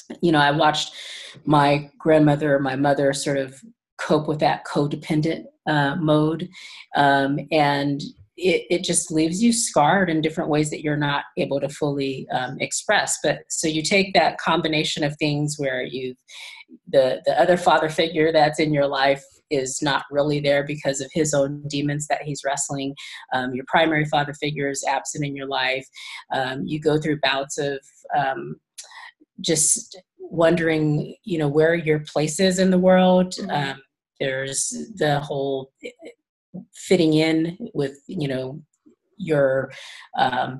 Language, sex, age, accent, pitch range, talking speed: English, female, 40-59, American, 140-175 Hz, 155 wpm